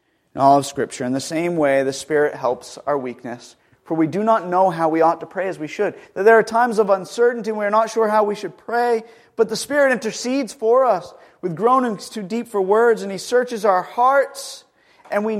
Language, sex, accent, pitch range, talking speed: English, male, American, 145-210 Hz, 235 wpm